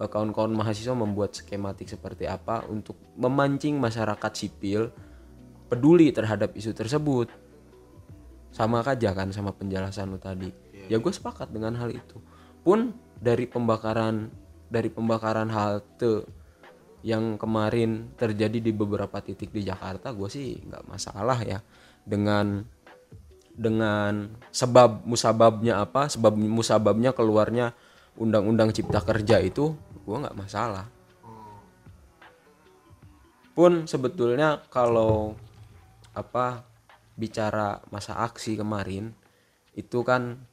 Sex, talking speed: male, 105 wpm